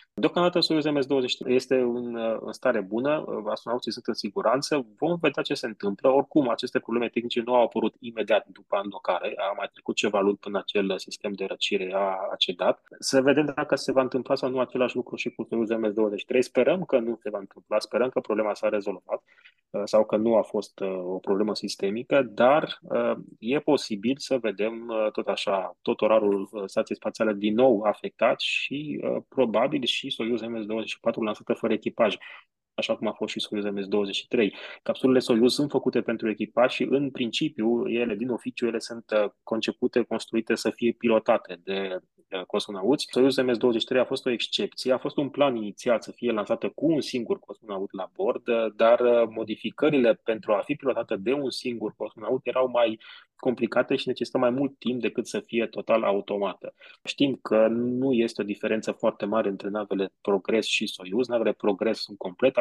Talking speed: 175 wpm